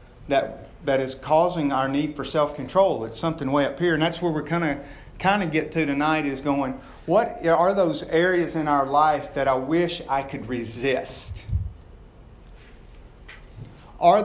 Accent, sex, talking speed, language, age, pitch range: American, male, 175 wpm, English, 50-69, 130-170 Hz